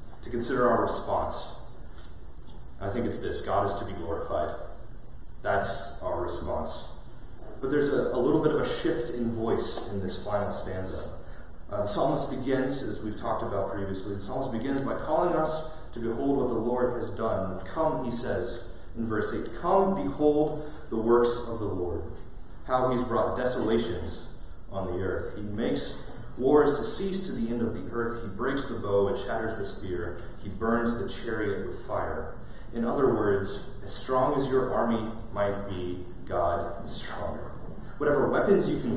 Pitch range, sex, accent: 100-130 Hz, male, American